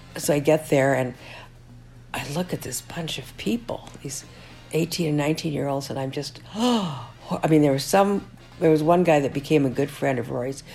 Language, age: English, 60-79